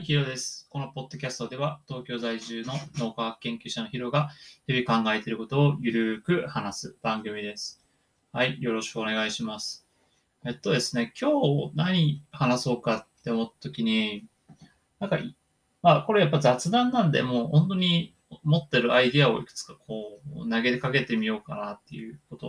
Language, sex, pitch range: Japanese, male, 115-160 Hz